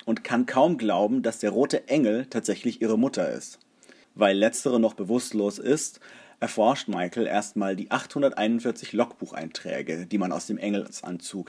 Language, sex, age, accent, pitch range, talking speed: German, male, 30-49, German, 110-135 Hz, 145 wpm